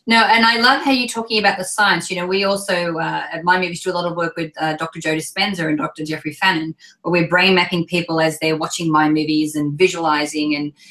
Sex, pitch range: female, 165-210 Hz